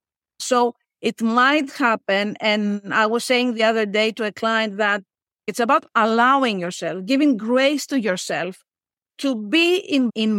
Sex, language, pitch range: female, Greek, 220-275 Hz